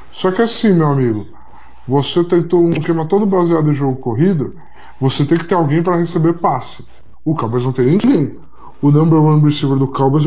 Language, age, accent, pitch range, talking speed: Portuguese, 20-39, Brazilian, 140-170 Hz, 195 wpm